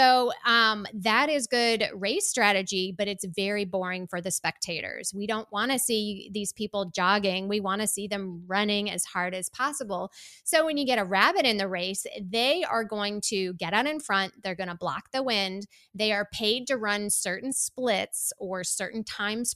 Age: 20-39